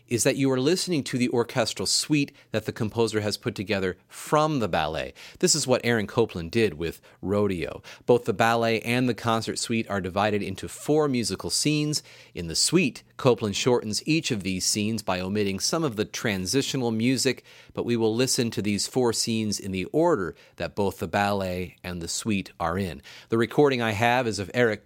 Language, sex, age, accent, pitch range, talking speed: English, male, 40-59, American, 105-135 Hz, 200 wpm